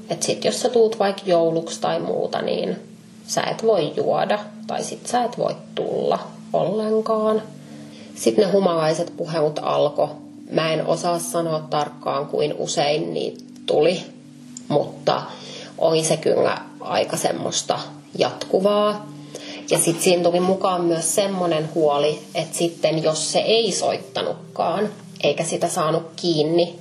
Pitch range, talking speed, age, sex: 160-205 Hz, 130 wpm, 30-49, female